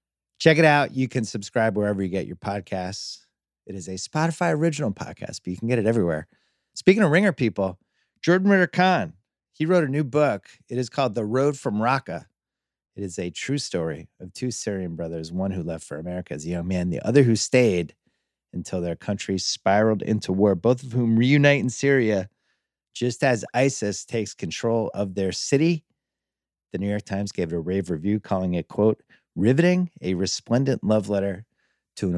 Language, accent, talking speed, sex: English, American, 190 wpm, male